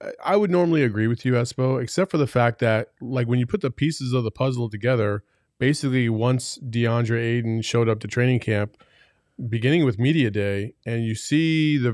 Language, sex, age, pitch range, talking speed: English, male, 30-49, 115-135 Hz, 195 wpm